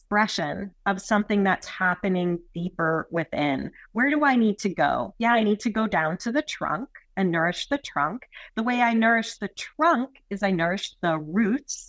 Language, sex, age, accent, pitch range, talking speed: English, female, 30-49, American, 170-225 Hz, 185 wpm